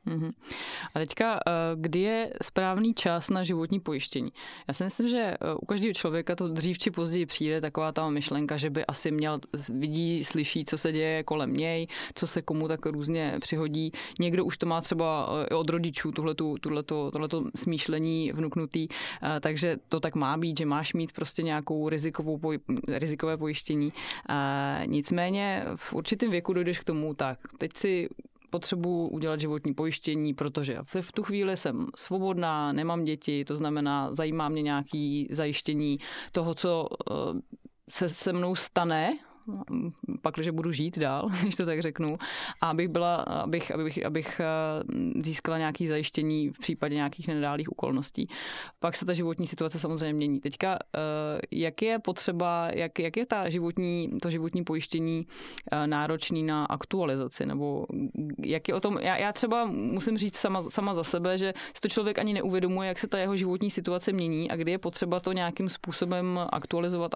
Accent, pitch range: native, 155-185 Hz